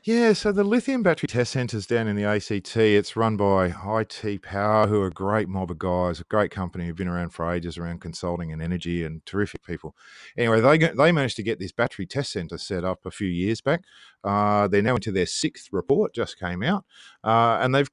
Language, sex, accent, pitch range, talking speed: English, male, Australian, 90-120 Hz, 230 wpm